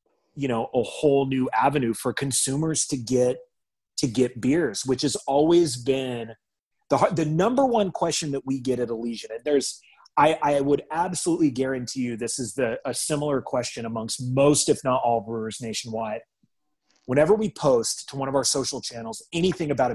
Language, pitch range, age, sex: English, 125-155 Hz, 30-49, male